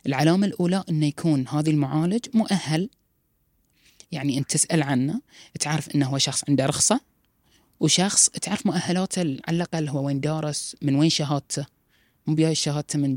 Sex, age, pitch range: female, 20-39, 140-170 Hz